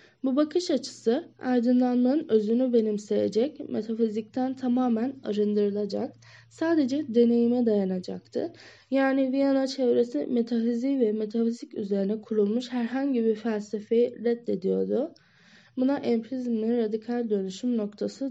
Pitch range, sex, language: 205-245 Hz, female, Turkish